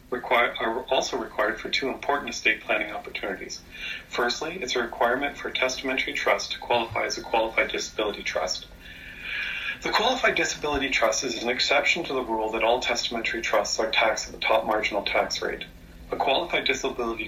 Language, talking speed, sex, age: English, 170 wpm, male, 40-59